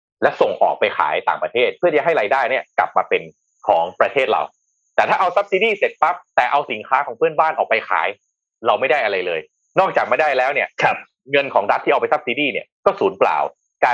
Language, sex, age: Thai, male, 30-49